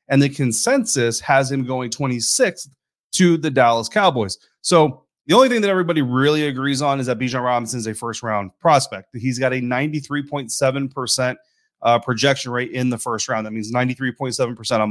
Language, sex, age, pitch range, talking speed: English, male, 30-49, 120-160 Hz, 175 wpm